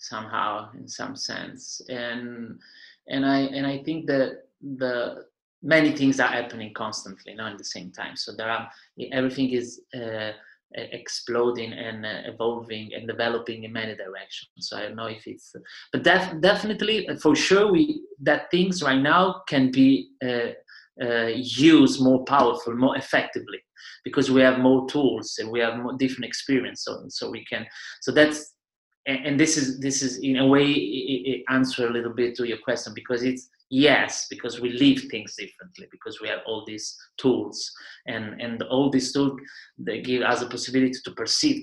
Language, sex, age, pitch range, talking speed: English, male, 30-49, 120-140 Hz, 175 wpm